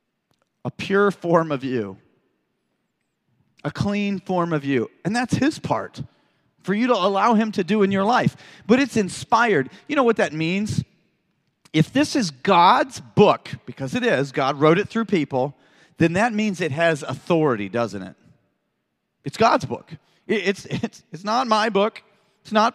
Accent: American